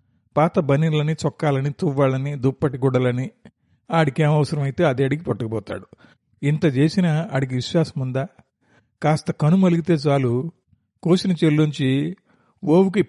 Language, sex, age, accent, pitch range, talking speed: Telugu, male, 50-69, native, 130-165 Hz, 105 wpm